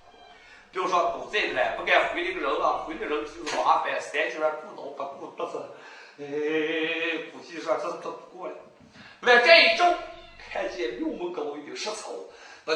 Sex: male